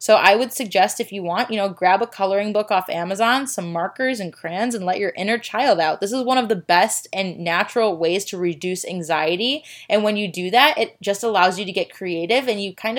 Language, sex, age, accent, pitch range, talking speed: English, female, 20-39, American, 180-235 Hz, 240 wpm